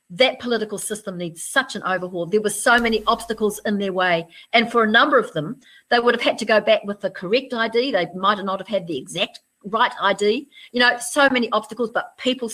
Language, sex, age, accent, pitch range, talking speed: English, female, 50-69, Australian, 175-220 Hz, 230 wpm